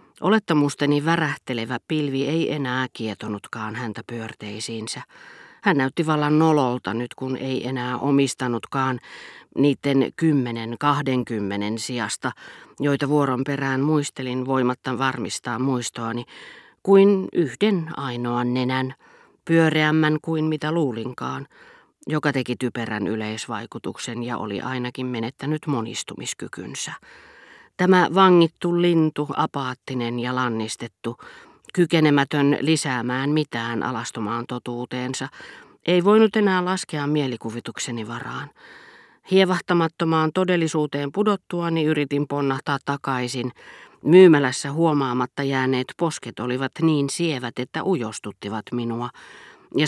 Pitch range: 120-155 Hz